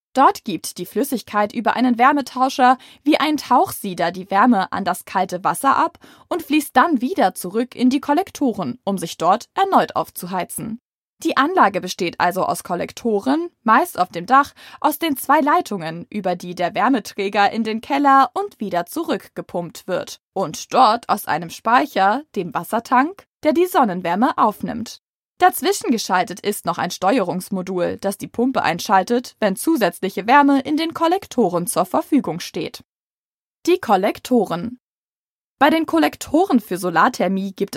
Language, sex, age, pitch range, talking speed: German, female, 20-39, 190-290 Hz, 150 wpm